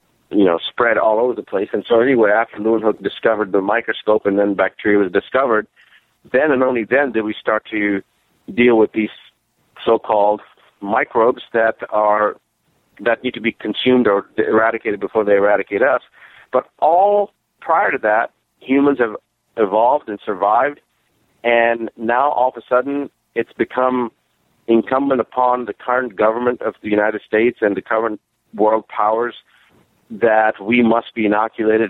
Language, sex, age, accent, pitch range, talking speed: English, male, 50-69, American, 105-120 Hz, 160 wpm